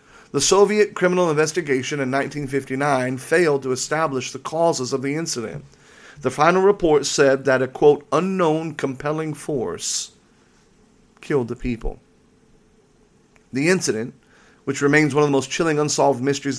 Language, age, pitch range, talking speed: English, 40-59, 135-155 Hz, 135 wpm